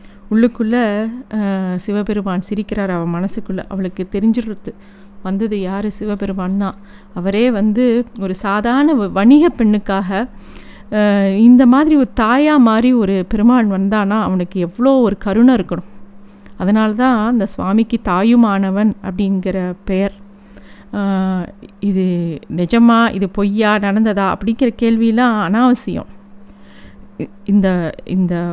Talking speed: 100 wpm